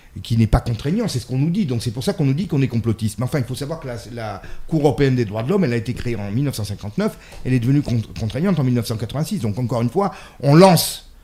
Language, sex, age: French, male, 40-59